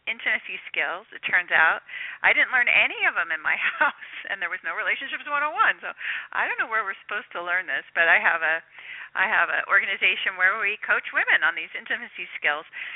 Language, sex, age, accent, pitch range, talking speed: English, female, 40-59, American, 190-295 Hz, 215 wpm